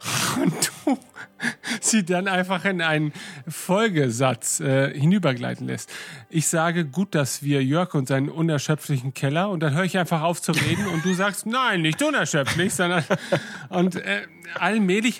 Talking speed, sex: 155 wpm, male